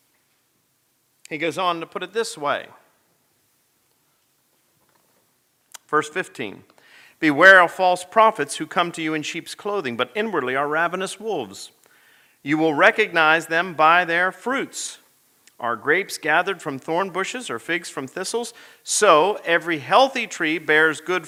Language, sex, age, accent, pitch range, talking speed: English, male, 40-59, American, 155-205 Hz, 140 wpm